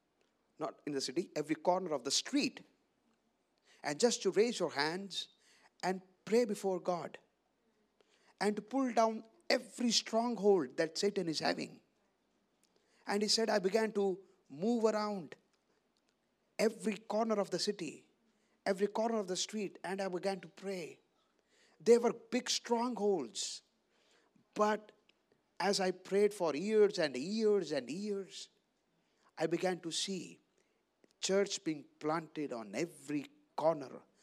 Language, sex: English, male